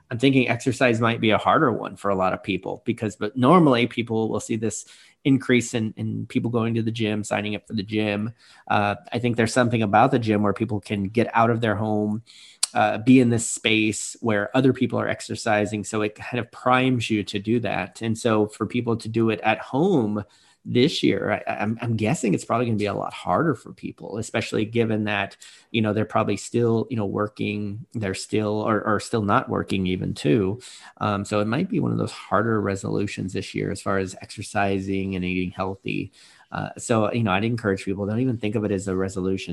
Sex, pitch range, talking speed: male, 100-115 Hz, 220 wpm